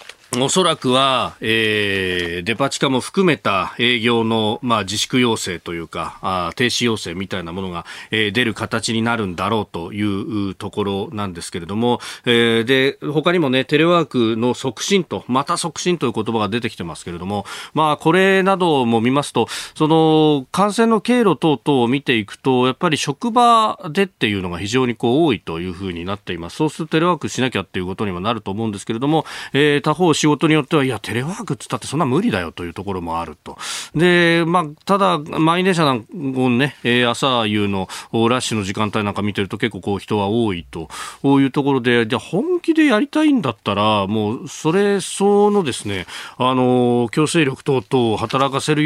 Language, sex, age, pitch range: Japanese, male, 40-59, 105-155 Hz